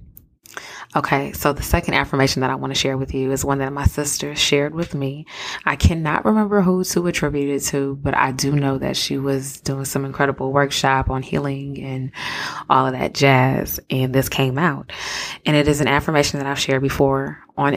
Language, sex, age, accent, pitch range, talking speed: English, female, 20-39, American, 135-155 Hz, 205 wpm